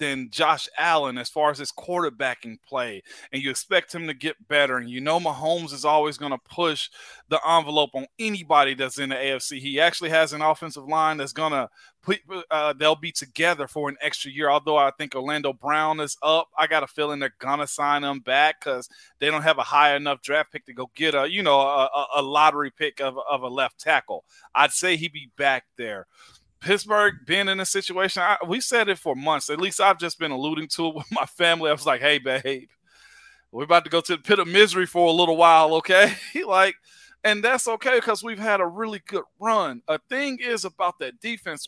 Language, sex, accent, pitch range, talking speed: English, male, American, 145-190 Hz, 220 wpm